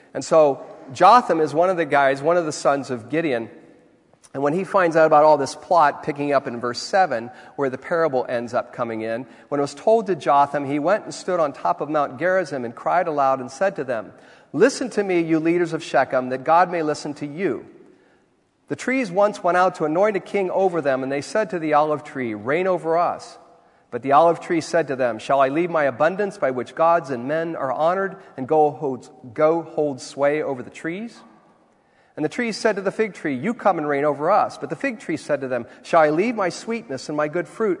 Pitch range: 135-175 Hz